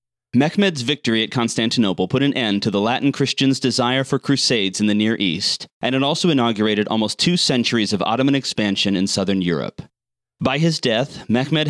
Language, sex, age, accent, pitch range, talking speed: English, male, 30-49, American, 110-140 Hz, 180 wpm